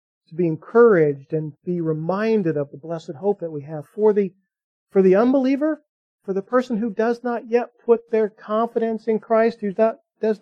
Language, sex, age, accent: English, male, 40-59, American